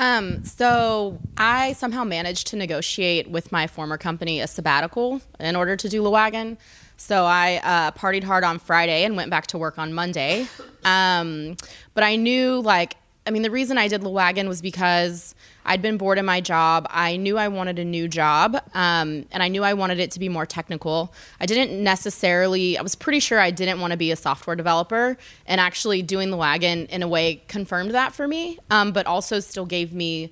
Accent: American